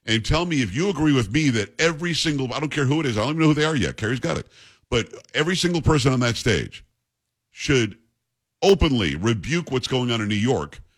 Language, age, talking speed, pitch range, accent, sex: English, 50-69, 240 wpm, 110-145 Hz, American, male